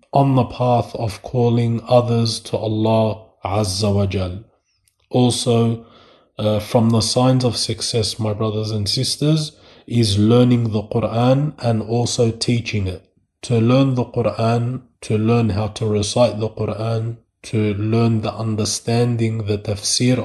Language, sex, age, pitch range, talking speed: English, male, 20-39, 105-120 Hz, 140 wpm